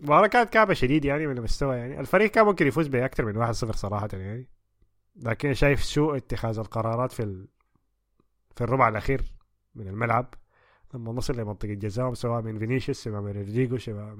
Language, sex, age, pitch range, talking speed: Arabic, male, 20-39, 110-145 Hz, 175 wpm